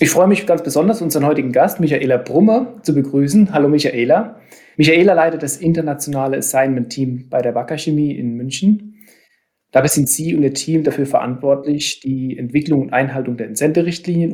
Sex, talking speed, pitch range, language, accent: male, 165 wpm, 130-165 Hz, English, German